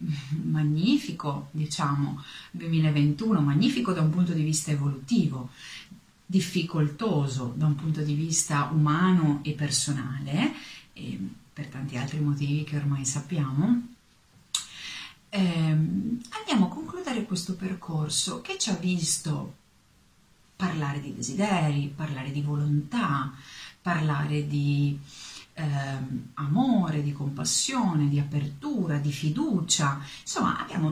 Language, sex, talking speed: Italian, female, 105 wpm